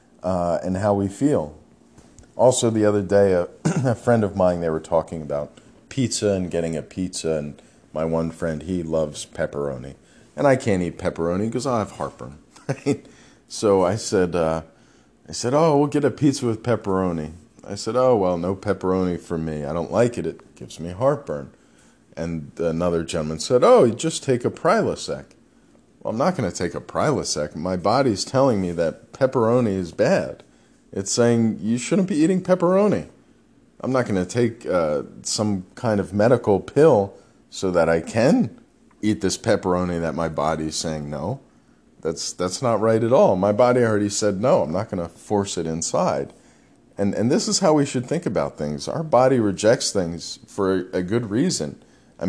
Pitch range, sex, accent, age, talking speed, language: 85-115 Hz, male, American, 40-59, 185 wpm, English